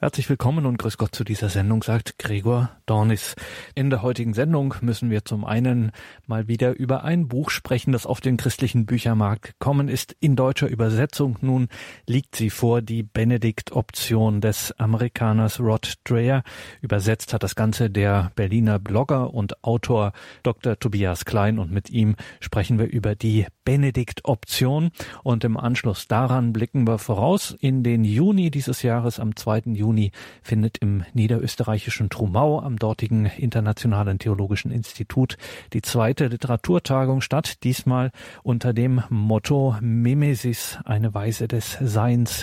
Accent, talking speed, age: German, 145 wpm, 40-59